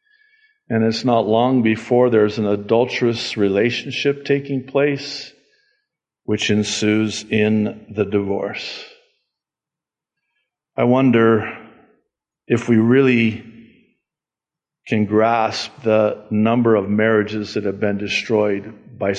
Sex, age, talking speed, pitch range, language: male, 50-69, 100 wpm, 105-130 Hz, English